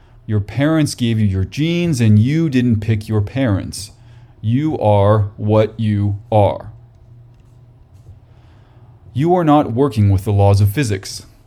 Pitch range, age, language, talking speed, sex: 105-125 Hz, 30-49, English, 135 wpm, male